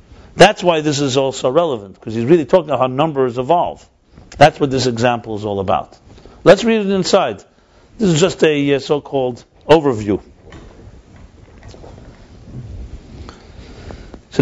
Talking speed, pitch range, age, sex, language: 135 wpm, 115-165 Hz, 50-69, male, English